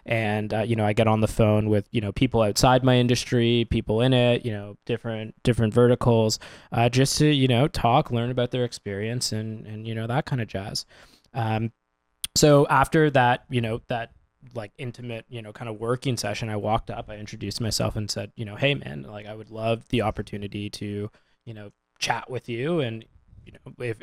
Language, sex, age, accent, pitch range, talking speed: English, male, 20-39, American, 105-120 Hz, 205 wpm